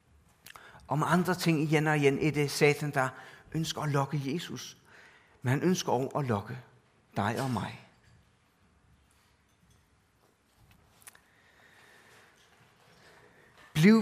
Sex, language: male, Danish